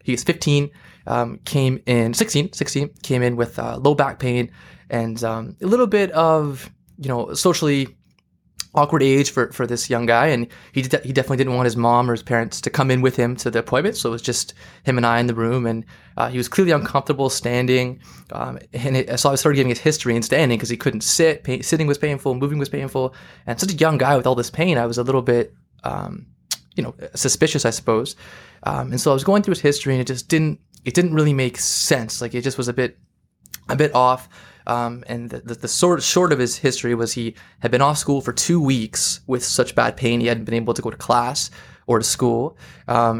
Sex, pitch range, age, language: male, 120-145 Hz, 20-39, English